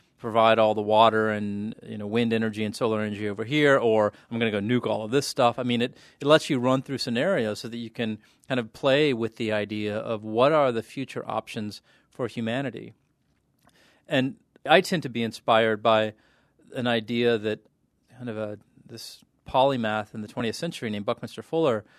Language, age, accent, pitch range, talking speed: English, 40-59, American, 110-125 Hz, 200 wpm